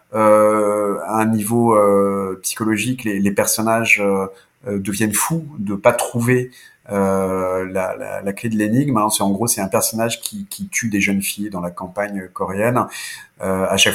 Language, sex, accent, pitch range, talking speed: French, male, French, 100-125 Hz, 185 wpm